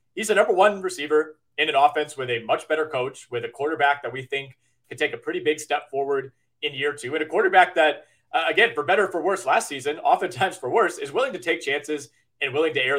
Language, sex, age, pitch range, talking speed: English, male, 30-49, 130-165 Hz, 250 wpm